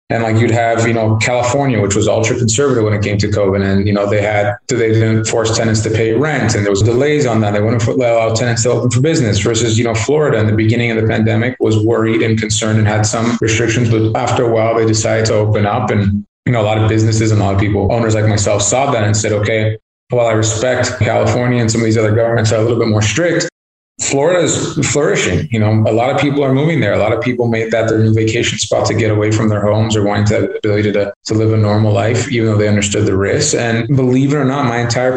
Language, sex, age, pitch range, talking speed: English, male, 20-39, 110-115 Hz, 275 wpm